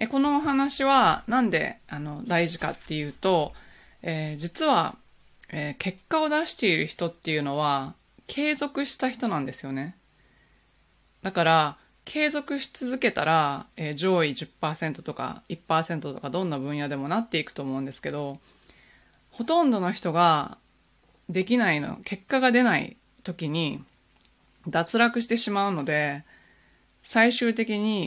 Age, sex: 20-39, female